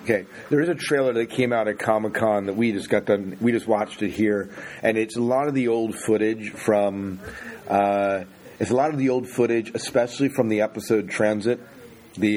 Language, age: English, 40-59